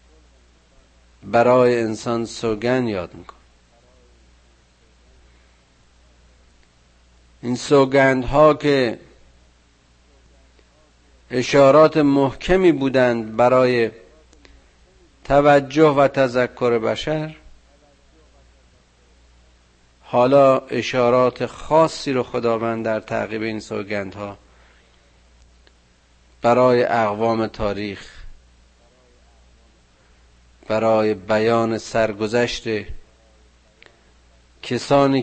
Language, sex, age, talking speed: Persian, male, 50-69, 60 wpm